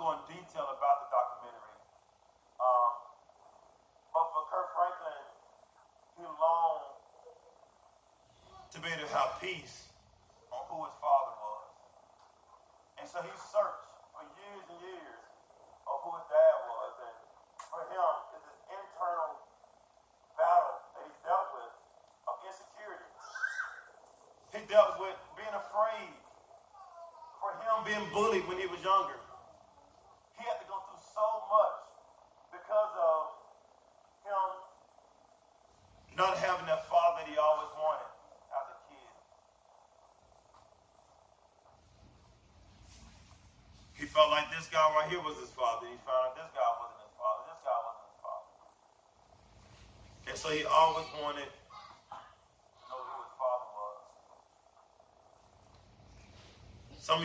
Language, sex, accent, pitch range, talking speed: English, male, American, 130-205 Hz, 120 wpm